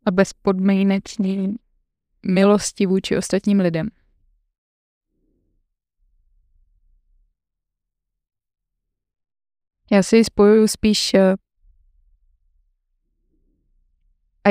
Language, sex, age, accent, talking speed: Czech, female, 20-39, native, 45 wpm